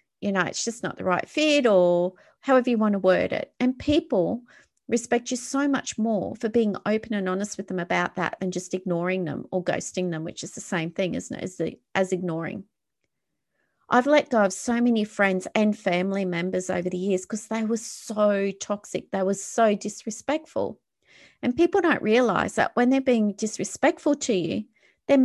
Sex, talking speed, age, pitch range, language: female, 195 wpm, 40-59, 195-250 Hz, English